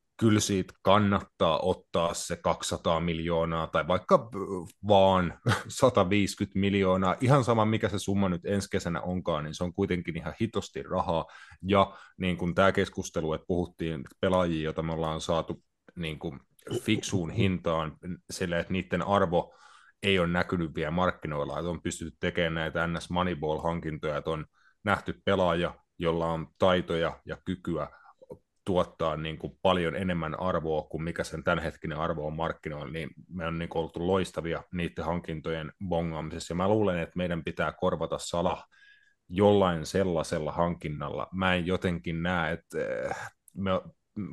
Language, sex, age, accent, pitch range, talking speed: Finnish, male, 30-49, native, 80-95 Hz, 140 wpm